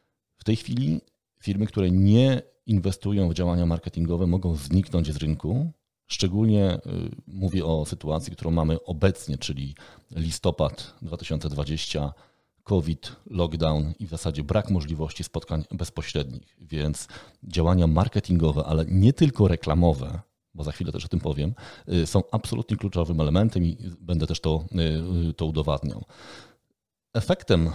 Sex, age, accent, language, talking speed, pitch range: male, 40-59, native, Polish, 125 wpm, 80-105 Hz